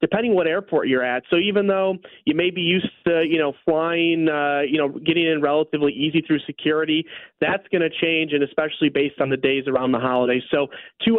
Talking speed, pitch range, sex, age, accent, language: 215 wpm, 140-175 Hz, male, 30-49, American, English